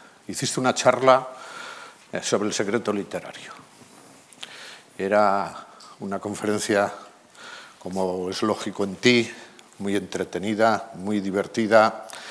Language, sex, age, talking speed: Spanish, male, 50-69, 95 wpm